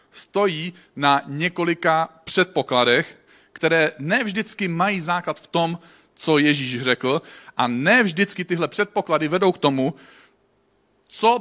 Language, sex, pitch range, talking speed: Czech, male, 125-175 Hz, 110 wpm